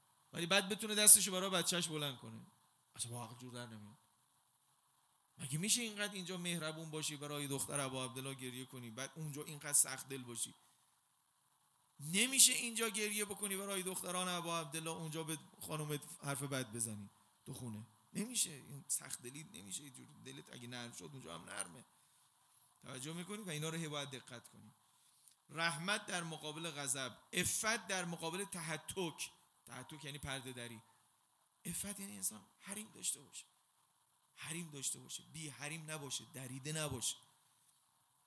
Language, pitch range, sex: Persian, 130-180 Hz, male